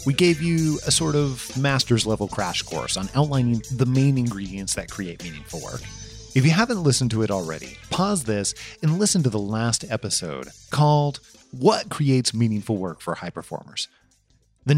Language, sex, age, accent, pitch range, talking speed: English, male, 30-49, American, 105-145 Hz, 175 wpm